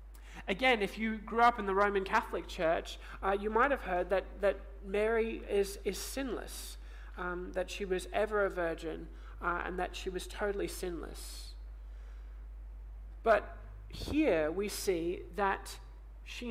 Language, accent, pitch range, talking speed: English, Australian, 155-220 Hz, 150 wpm